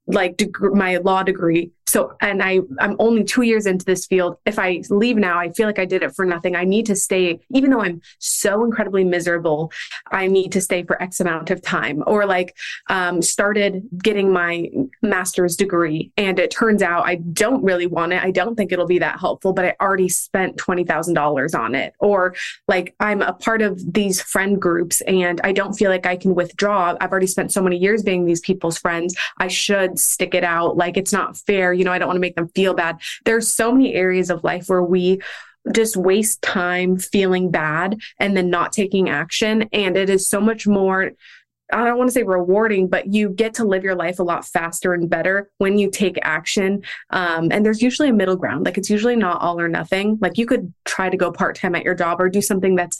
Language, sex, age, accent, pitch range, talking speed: English, female, 20-39, American, 175-200 Hz, 225 wpm